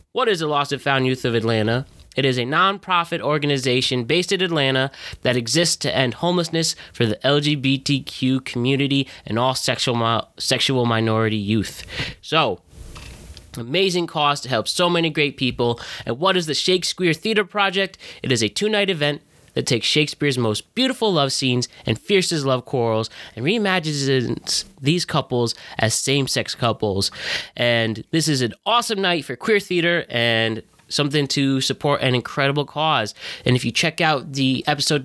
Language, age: English, 10-29